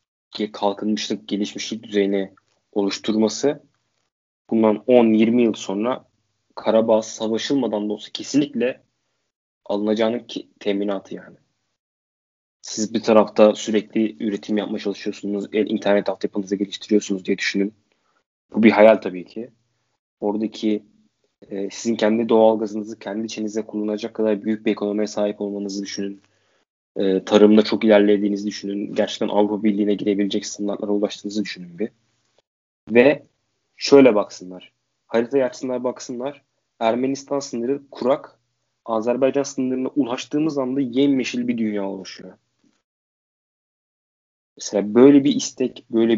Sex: male